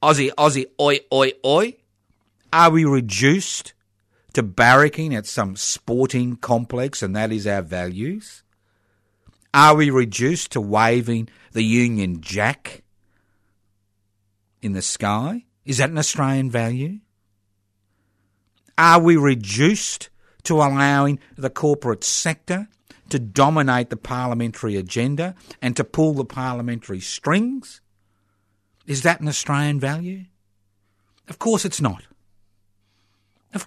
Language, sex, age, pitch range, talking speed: English, male, 50-69, 100-140 Hz, 115 wpm